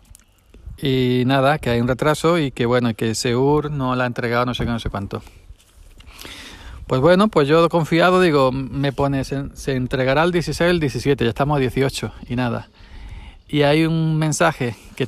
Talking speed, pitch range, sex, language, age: 185 wpm, 115-140 Hz, male, Spanish, 40-59